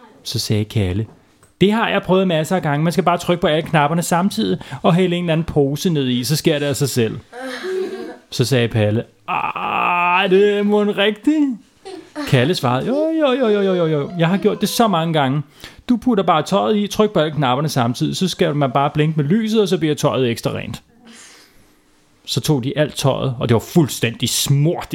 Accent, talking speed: native, 210 wpm